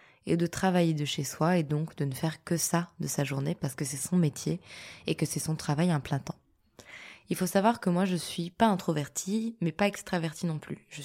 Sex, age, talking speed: female, 20-39, 240 wpm